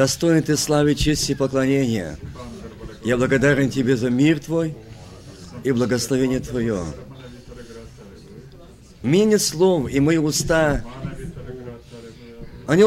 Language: Russian